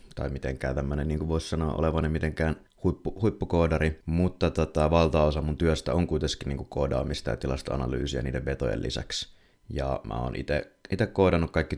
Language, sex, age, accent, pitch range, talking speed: Finnish, male, 30-49, native, 70-85 Hz, 165 wpm